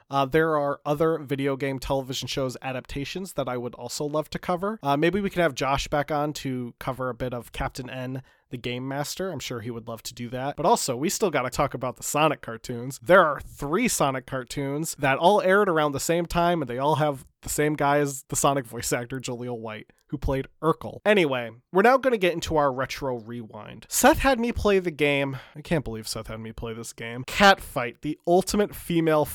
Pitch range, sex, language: 130-170 Hz, male, English